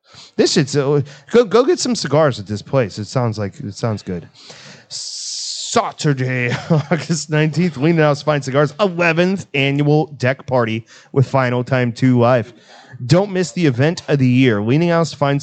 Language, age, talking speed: English, 30-49, 165 wpm